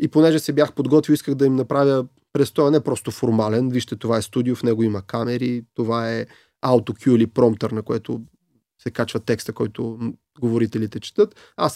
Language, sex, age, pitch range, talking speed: Bulgarian, male, 30-49, 115-150 Hz, 180 wpm